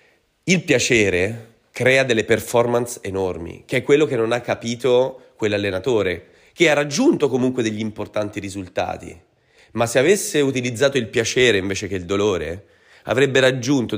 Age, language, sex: 30-49, Italian, male